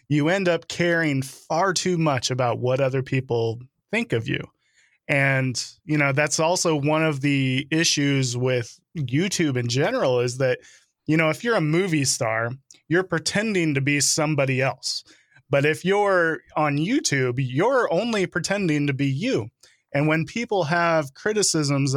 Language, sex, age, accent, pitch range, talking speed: English, male, 20-39, American, 130-165 Hz, 160 wpm